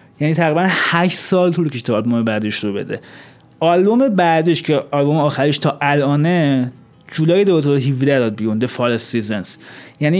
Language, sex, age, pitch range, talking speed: Persian, male, 30-49, 135-180 Hz, 140 wpm